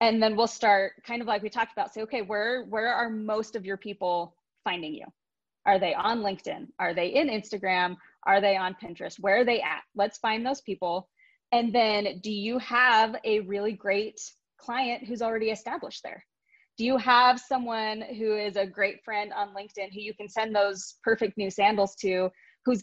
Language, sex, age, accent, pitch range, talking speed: English, female, 20-39, American, 195-235 Hz, 195 wpm